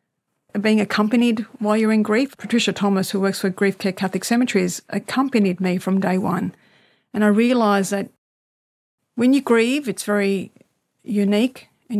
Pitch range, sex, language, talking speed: 200-225 Hz, female, English, 155 wpm